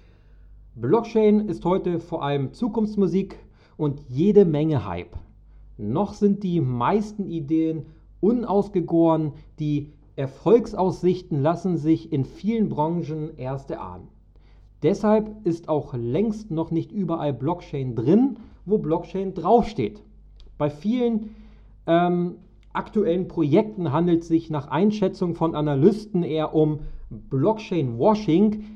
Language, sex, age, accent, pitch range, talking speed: German, male, 40-59, German, 150-195 Hz, 105 wpm